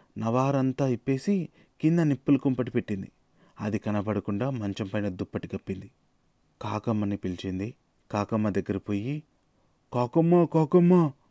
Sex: male